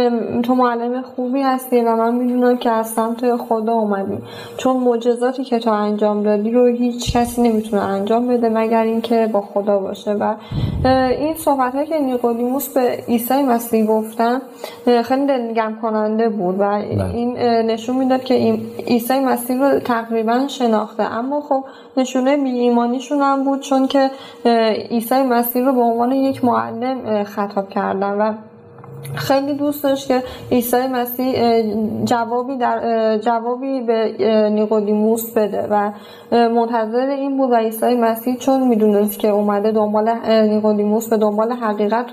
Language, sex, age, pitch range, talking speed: Persian, female, 10-29, 220-250 Hz, 140 wpm